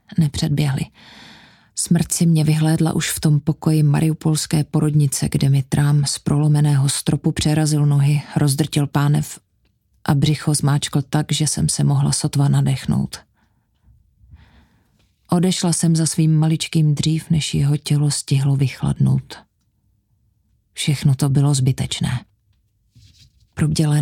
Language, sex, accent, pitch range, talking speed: Czech, female, native, 140-160 Hz, 115 wpm